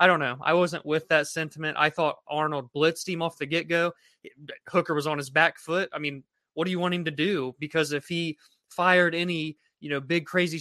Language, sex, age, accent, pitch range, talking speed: English, male, 20-39, American, 145-175 Hz, 225 wpm